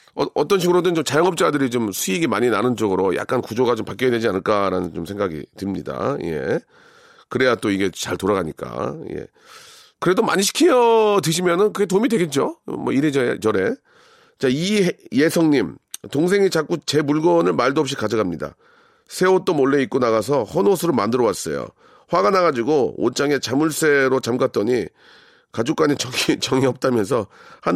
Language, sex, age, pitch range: Korean, male, 40-59, 130-200 Hz